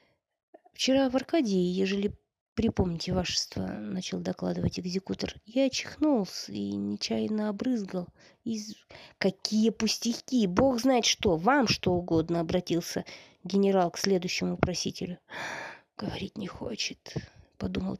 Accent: native